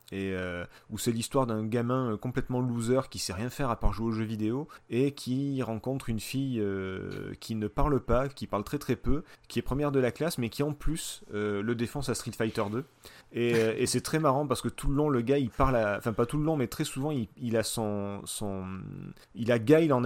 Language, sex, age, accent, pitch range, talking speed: French, male, 30-49, French, 110-140 Hz, 255 wpm